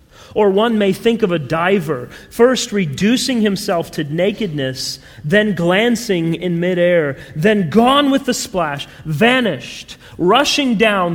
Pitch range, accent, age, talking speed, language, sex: 135-190 Hz, American, 40-59, 130 wpm, English, male